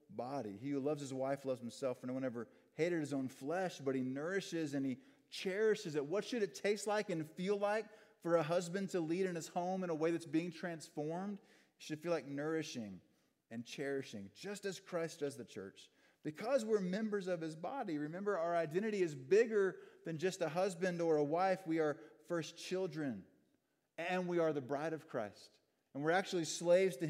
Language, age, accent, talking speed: English, 30-49, American, 200 wpm